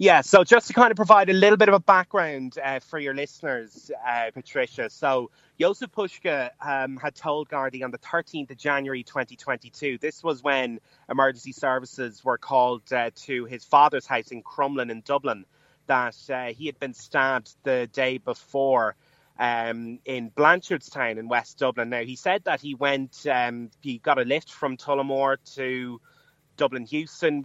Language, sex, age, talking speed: English, male, 30-49, 175 wpm